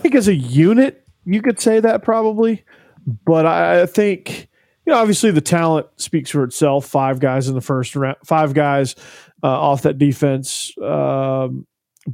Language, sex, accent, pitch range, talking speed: English, male, American, 130-165 Hz, 170 wpm